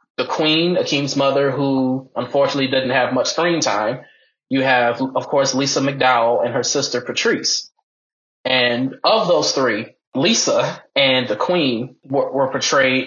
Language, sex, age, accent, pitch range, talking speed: English, male, 20-39, American, 125-150 Hz, 145 wpm